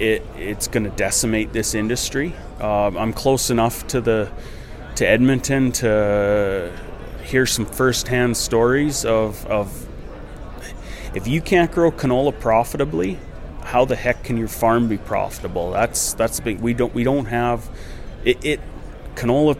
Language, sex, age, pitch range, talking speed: English, male, 30-49, 105-125 Hz, 145 wpm